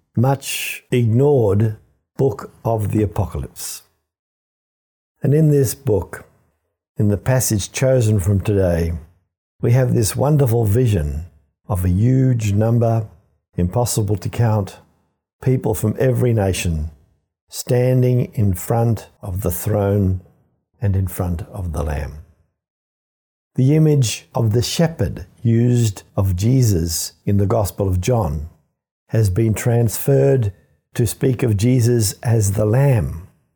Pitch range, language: 90-120 Hz, English